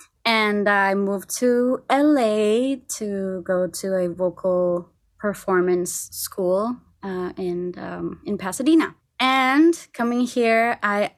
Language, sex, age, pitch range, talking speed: English, female, 20-39, 190-265 Hz, 115 wpm